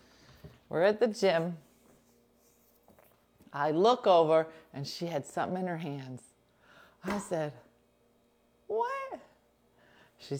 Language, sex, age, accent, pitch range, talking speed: English, female, 30-49, American, 140-235 Hz, 105 wpm